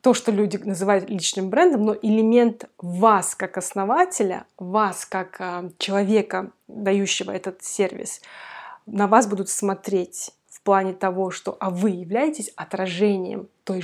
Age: 20-39